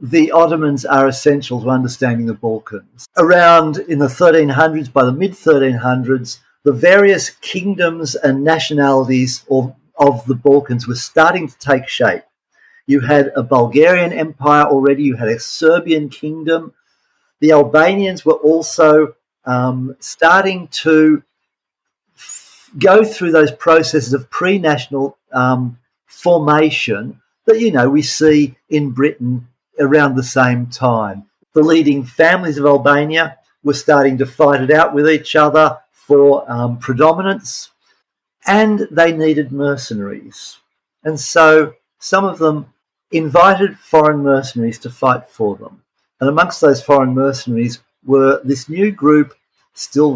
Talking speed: 130 wpm